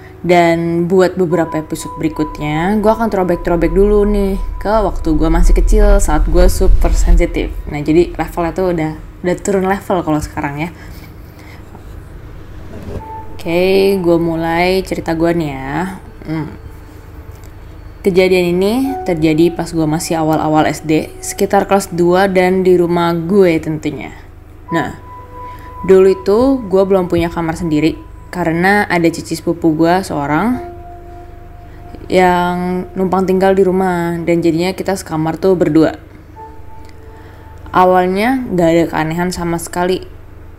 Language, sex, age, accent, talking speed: Indonesian, female, 20-39, native, 125 wpm